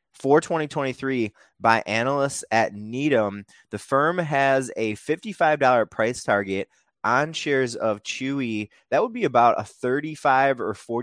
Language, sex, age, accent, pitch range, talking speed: English, male, 20-39, American, 105-130 Hz, 130 wpm